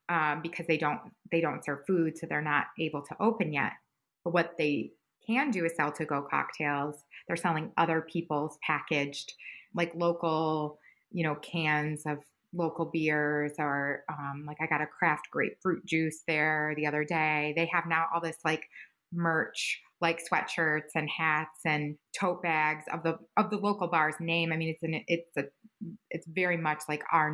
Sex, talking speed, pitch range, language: female, 180 wpm, 155-185 Hz, English